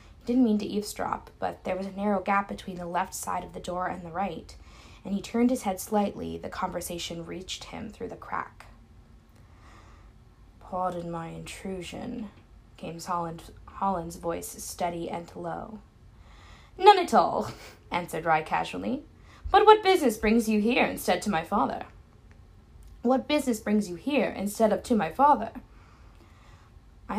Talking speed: 155 wpm